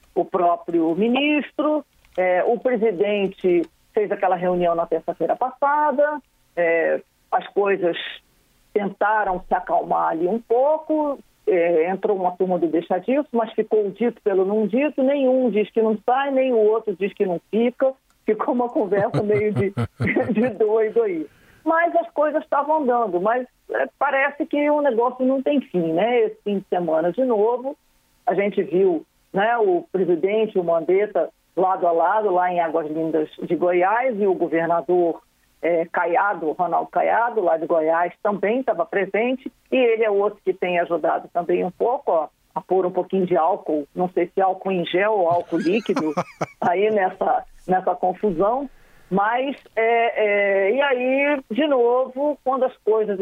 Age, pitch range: 40-59, 175-250 Hz